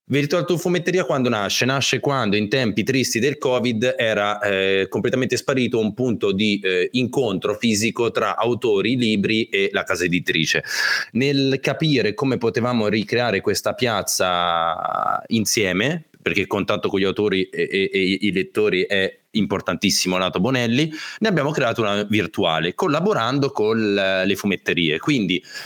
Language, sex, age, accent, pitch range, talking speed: Italian, male, 30-49, native, 105-145 Hz, 145 wpm